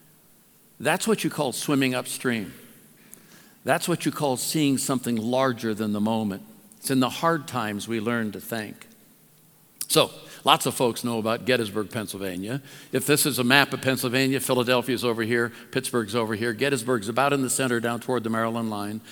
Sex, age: male, 60-79